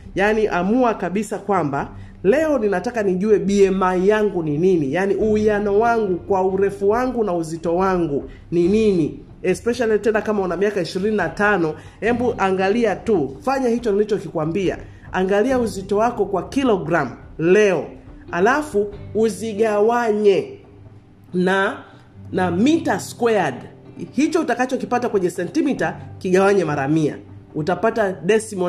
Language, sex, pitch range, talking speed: Swahili, male, 180-230 Hz, 115 wpm